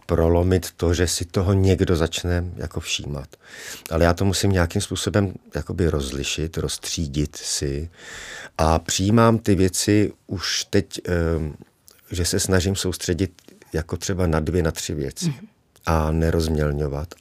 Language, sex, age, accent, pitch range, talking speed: Czech, male, 50-69, native, 80-95 Hz, 130 wpm